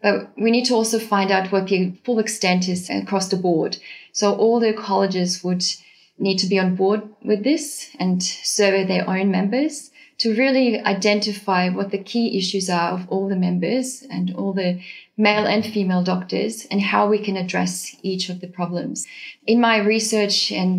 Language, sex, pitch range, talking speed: English, female, 185-215 Hz, 185 wpm